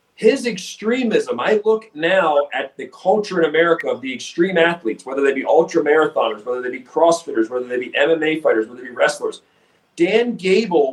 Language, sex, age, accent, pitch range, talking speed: English, male, 40-59, American, 150-220 Hz, 185 wpm